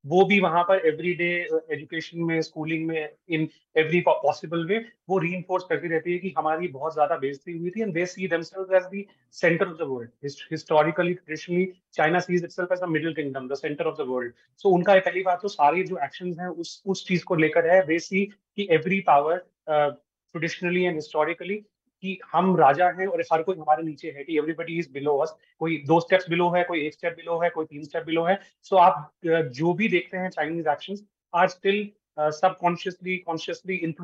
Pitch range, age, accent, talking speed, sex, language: 155-185 Hz, 30-49, native, 110 wpm, male, Hindi